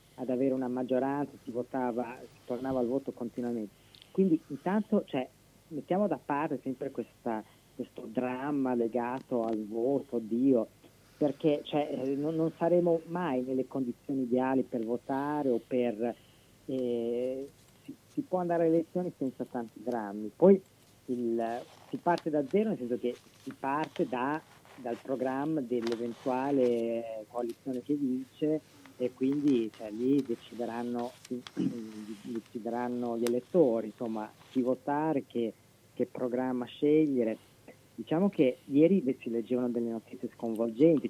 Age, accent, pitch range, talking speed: 40-59, native, 120-145 Hz, 130 wpm